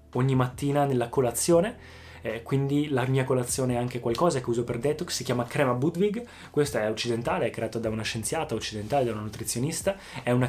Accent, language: native, Italian